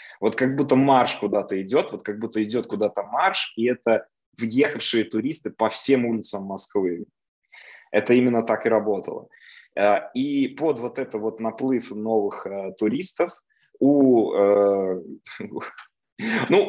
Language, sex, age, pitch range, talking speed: Russian, male, 20-39, 105-145 Hz, 125 wpm